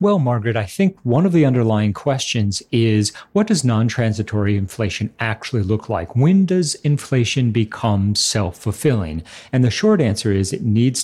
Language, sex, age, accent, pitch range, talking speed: English, male, 40-59, American, 105-135 Hz, 160 wpm